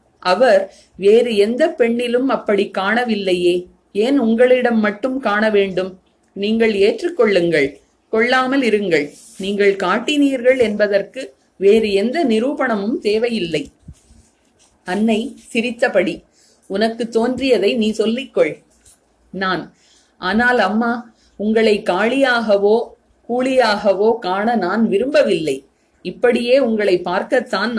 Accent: native